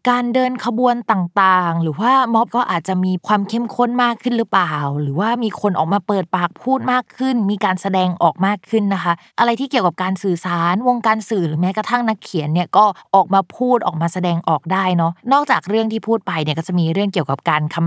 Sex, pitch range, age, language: female, 170-225 Hz, 20-39, Thai